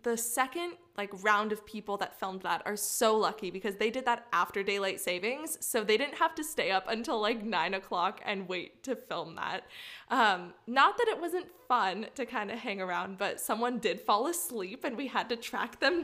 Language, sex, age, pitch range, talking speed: English, female, 20-39, 205-255 Hz, 215 wpm